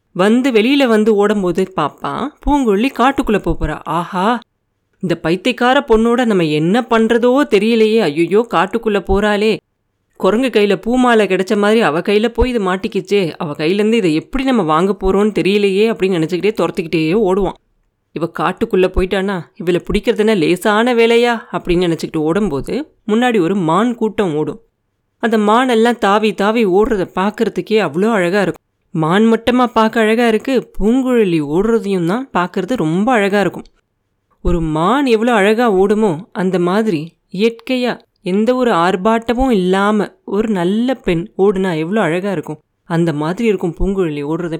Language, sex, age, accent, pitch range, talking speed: Tamil, female, 30-49, native, 175-225 Hz, 140 wpm